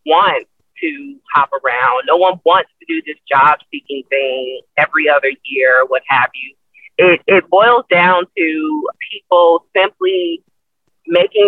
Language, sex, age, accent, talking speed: English, female, 30-49, American, 140 wpm